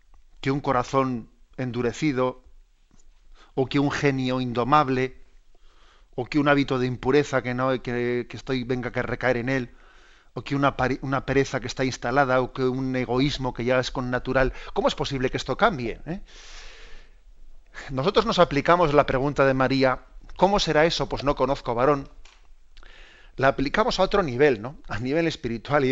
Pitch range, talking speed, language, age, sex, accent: 125-145 Hz, 170 wpm, Spanish, 40-59, male, Spanish